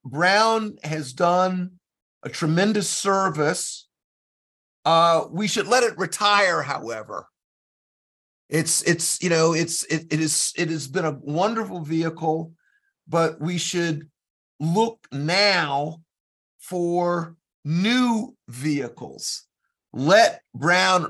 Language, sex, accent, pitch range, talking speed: English, male, American, 150-200 Hz, 105 wpm